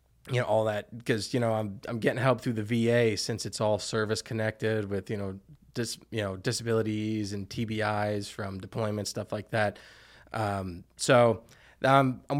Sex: male